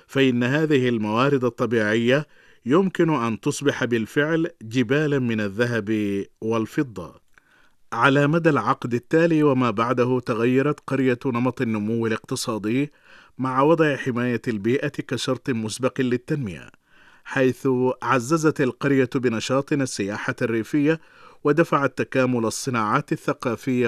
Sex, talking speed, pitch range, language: male, 100 wpm, 120-145 Hz, Arabic